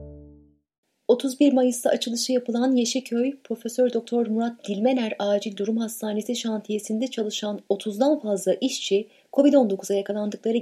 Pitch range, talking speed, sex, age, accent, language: 190-260 Hz, 105 wpm, female, 30-49, native, Turkish